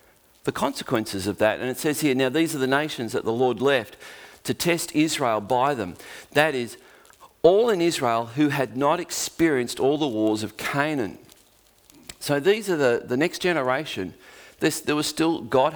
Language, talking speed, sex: English, 185 wpm, male